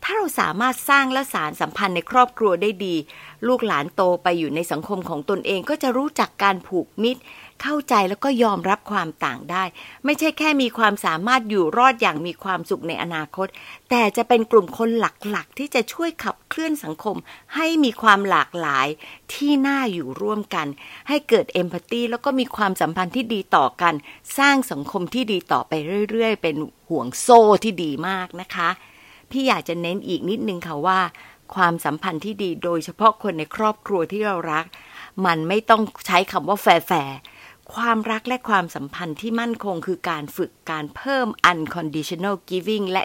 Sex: female